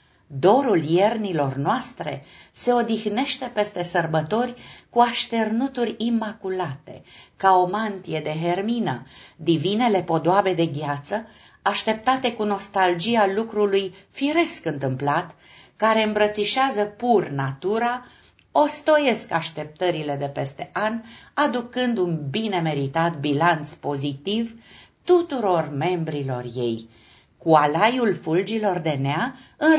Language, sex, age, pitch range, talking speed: Romanian, female, 50-69, 160-230 Hz, 100 wpm